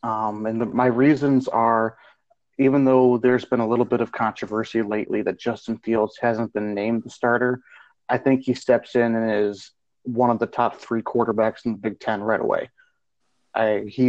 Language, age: English, 30-49